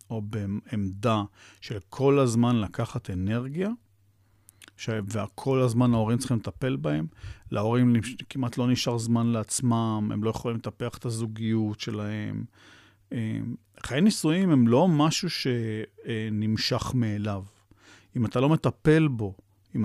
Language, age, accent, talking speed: Hebrew, 40-59, native, 120 wpm